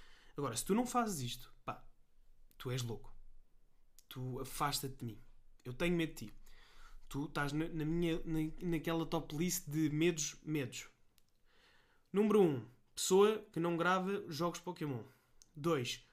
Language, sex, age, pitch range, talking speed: Portuguese, male, 20-39, 130-175 Hz, 150 wpm